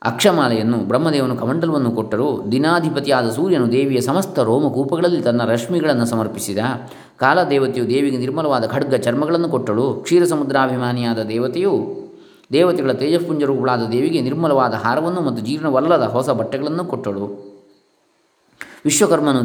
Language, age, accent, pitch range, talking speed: Kannada, 20-39, native, 115-145 Hz, 100 wpm